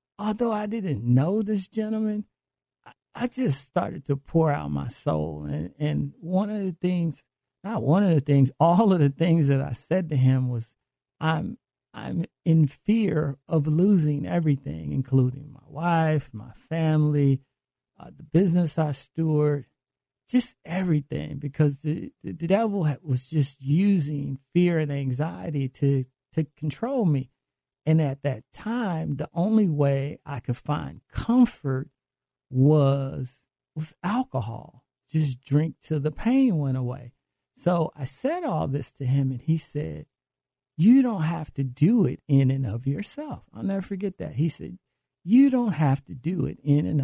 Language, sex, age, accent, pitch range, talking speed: English, male, 50-69, American, 135-175 Hz, 160 wpm